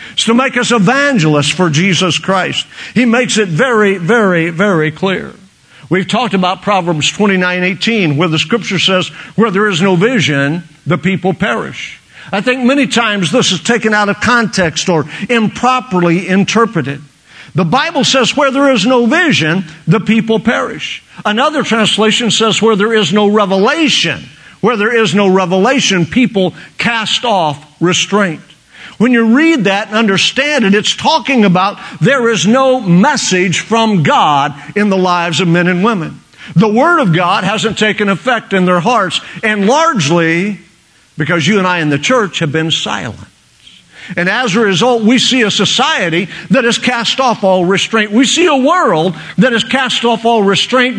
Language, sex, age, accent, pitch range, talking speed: English, male, 50-69, American, 180-235 Hz, 170 wpm